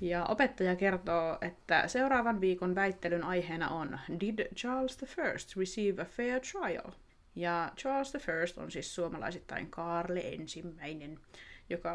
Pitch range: 170-235 Hz